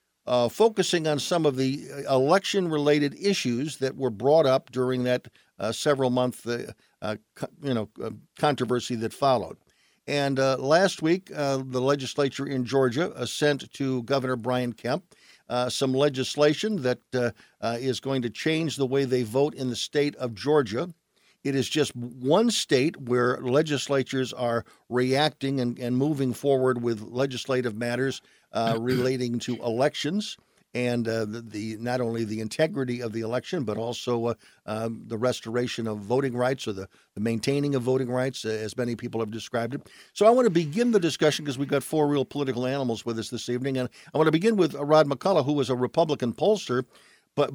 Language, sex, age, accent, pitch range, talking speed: English, male, 50-69, American, 120-145 Hz, 180 wpm